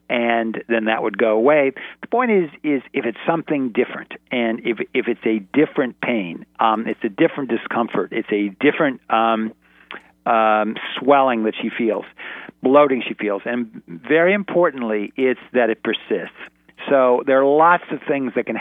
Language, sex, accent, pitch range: English, male, American, 105-130 Hz